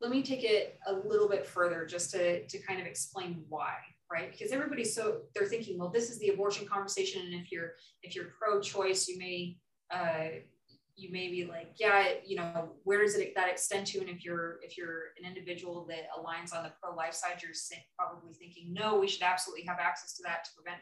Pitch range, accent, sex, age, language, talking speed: 165-200 Hz, American, female, 20-39, English, 215 wpm